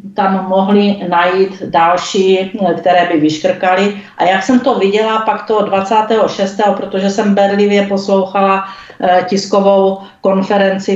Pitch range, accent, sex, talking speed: 170-200 Hz, native, female, 115 wpm